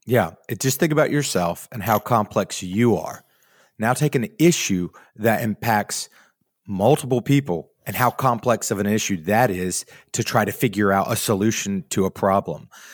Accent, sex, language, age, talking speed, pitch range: American, male, English, 30-49, 165 wpm, 90-115 Hz